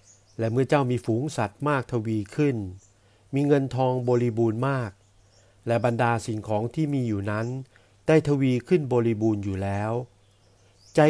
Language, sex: Thai, male